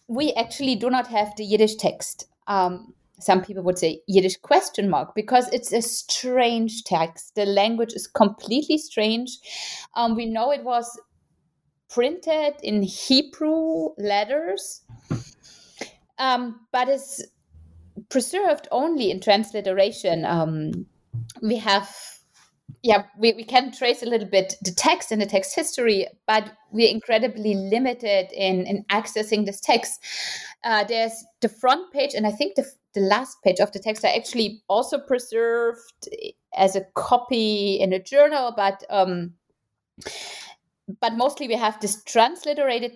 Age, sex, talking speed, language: 30-49, female, 140 wpm, English